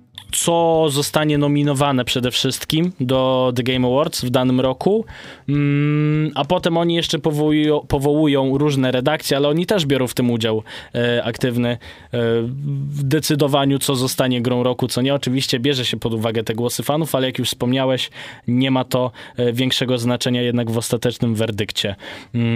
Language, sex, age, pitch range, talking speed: Polish, male, 20-39, 120-145 Hz, 150 wpm